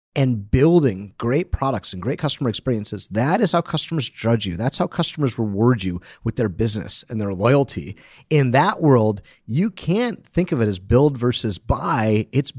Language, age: English, 40-59